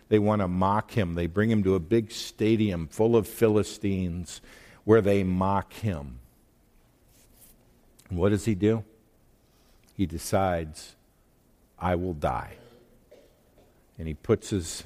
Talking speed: 130 wpm